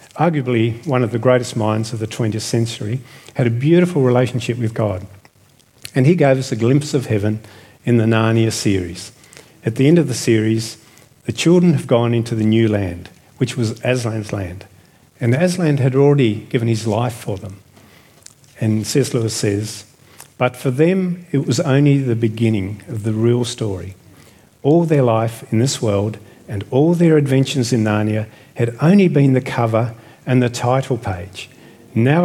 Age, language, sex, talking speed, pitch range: 50-69, English, male, 175 wpm, 110-135 Hz